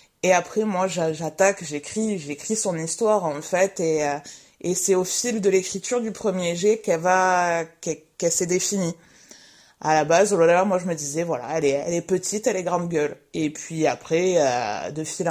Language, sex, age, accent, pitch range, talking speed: French, female, 20-39, French, 160-205 Hz, 200 wpm